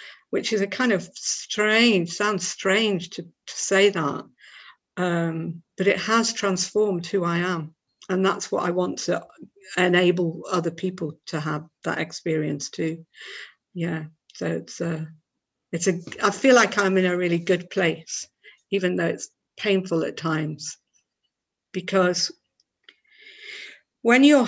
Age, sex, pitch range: 50-69, female, 170-205 Hz